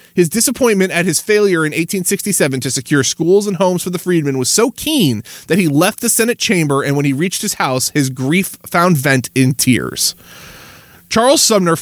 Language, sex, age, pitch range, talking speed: English, male, 20-39, 145-200 Hz, 195 wpm